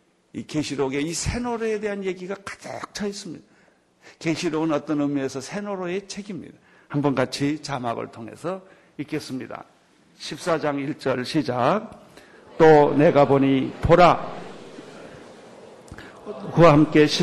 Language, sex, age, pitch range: Korean, male, 50-69, 130-155 Hz